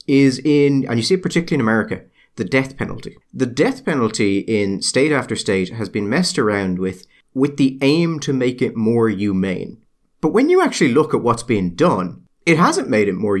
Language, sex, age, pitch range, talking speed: English, male, 30-49, 105-140 Hz, 205 wpm